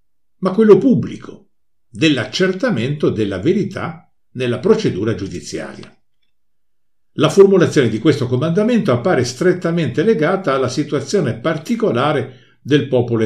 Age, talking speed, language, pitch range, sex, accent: 60-79, 100 wpm, Italian, 120-185 Hz, male, native